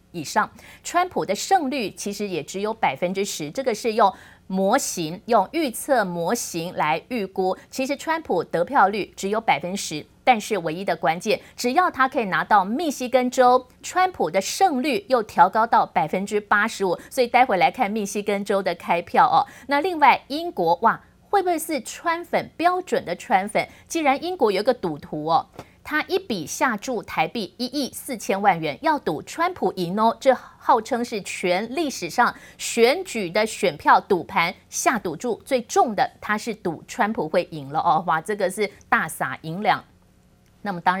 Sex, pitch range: female, 185-260 Hz